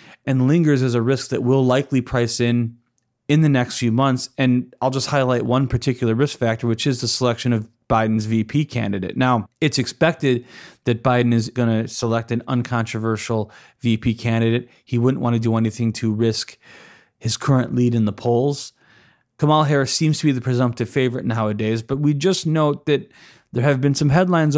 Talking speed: 190 wpm